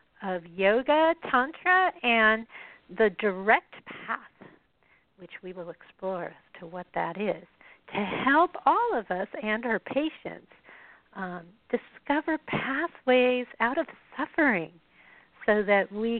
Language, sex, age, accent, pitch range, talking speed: English, female, 50-69, American, 195-280 Hz, 120 wpm